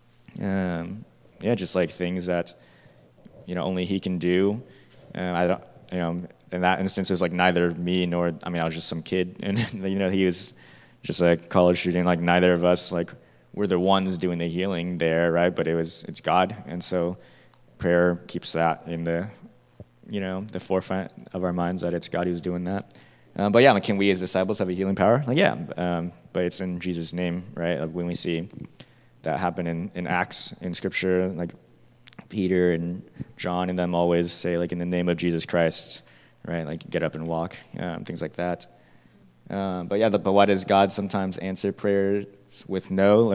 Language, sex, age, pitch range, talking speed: English, male, 20-39, 85-95 Hz, 205 wpm